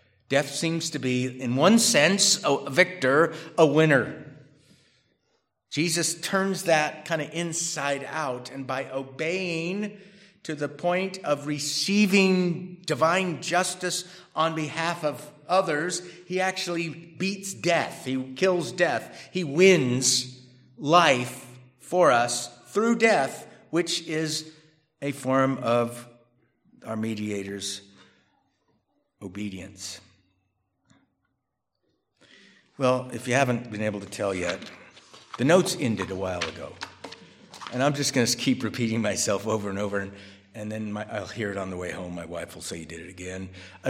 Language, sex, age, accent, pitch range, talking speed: English, male, 50-69, American, 110-165 Hz, 135 wpm